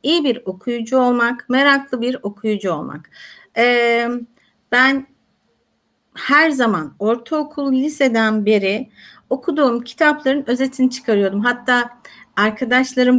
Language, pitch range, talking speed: Turkish, 210-270 Hz, 95 wpm